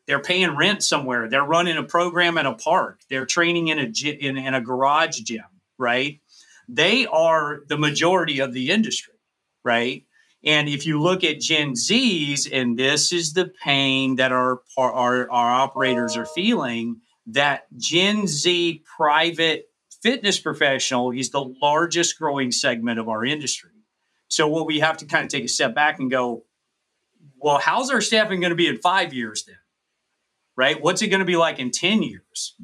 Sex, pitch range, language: male, 130-165 Hz, English